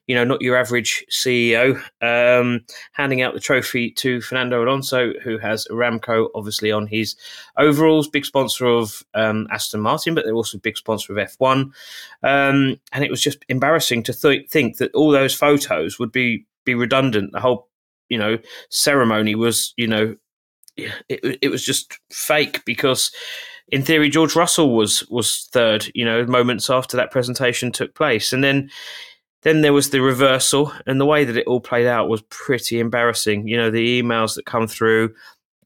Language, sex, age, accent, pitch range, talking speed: English, male, 20-39, British, 115-135 Hz, 180 wpm